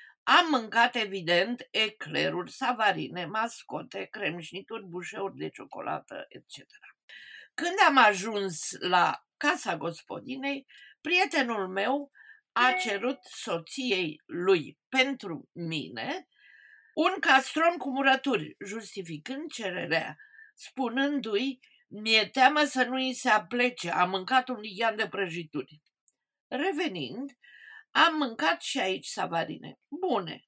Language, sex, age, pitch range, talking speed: Romanian, female, 50-69, 215-290 Hz, 100 wpm